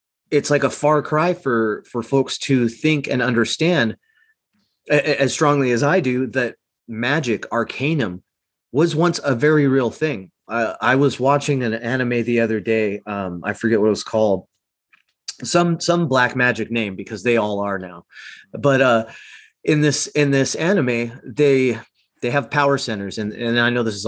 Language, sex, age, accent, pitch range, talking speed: English, male, 30-49, American, 110-140 Hz, 180 wpm